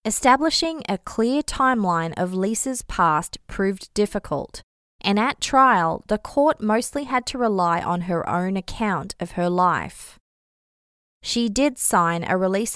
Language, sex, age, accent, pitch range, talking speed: English, female, 20-39, Australian, 170-220 Hz, 140 wpm